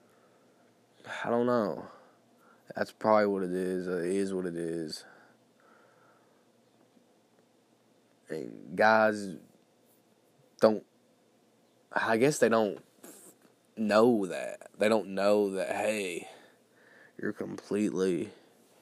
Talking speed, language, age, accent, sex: 90 wpm, English, 20-39, American, male